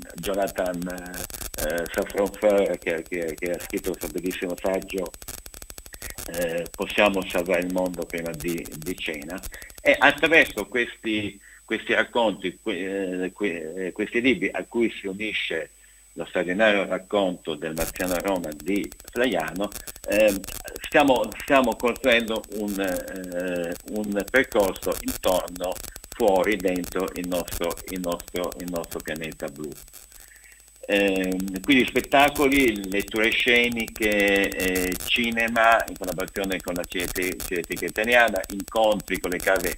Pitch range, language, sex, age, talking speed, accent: 90-110 Hz, Italian, male, 50-69, 120 wpm, native